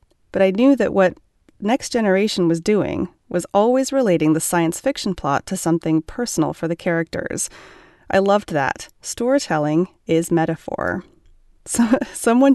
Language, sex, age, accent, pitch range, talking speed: English, female, 30-49, American, 165-215 Hz, 140 wpm